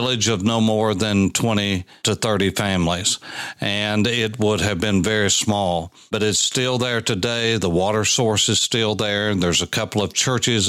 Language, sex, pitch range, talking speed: English, male, 100-120 Hz, 185 wpm